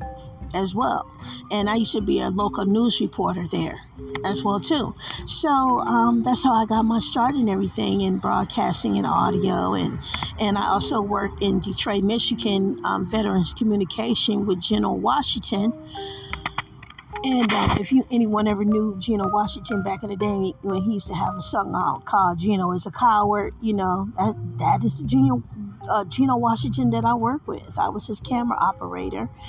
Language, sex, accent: English, female, American